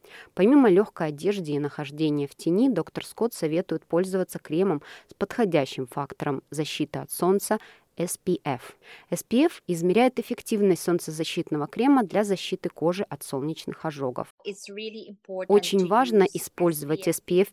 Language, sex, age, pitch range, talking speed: Russian, female, 20-39, 155-200 Hz, 115 wpm